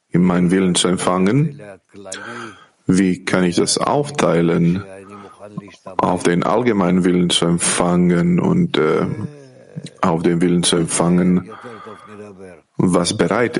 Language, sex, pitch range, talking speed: German, male, 90-115 Hz, 105 wpm